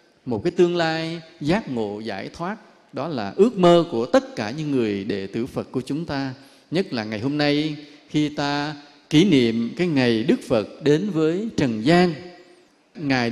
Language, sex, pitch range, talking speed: English, male, 130-185 Hz, 185 wpm